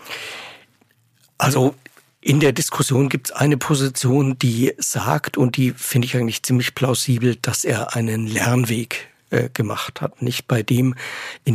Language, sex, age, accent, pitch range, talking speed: German, male, 60-79, German, 115-135 Hz, 145 wpm